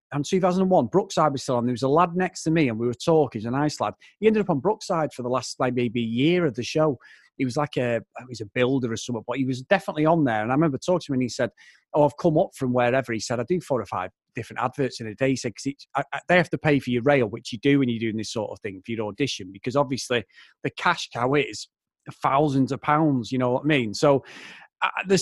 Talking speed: 290 wpm